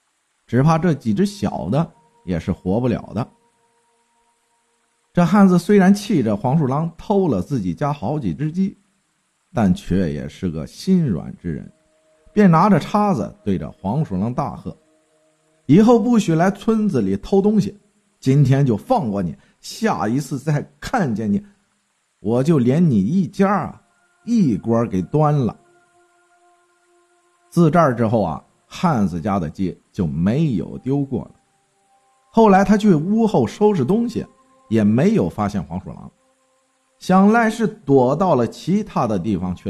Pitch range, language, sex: 140-215 Hz, Chinese, male